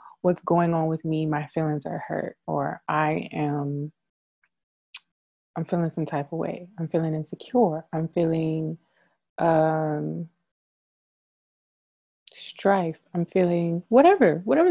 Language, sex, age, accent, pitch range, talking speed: English, female, 20-39, American, 170-210 Hz, 120 wpm